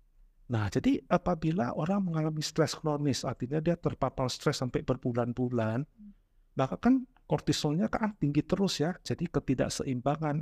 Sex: male